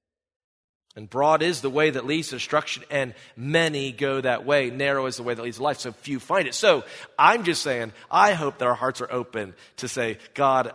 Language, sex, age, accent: English, male, 40-59, American